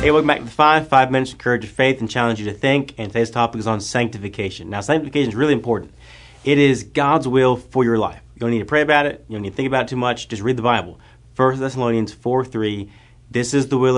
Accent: American